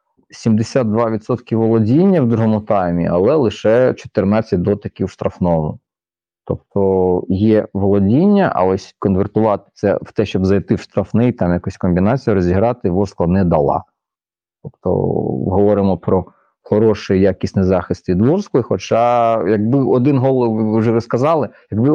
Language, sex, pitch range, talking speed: Ukrainian, male, 95-115 Hz, 125 wpm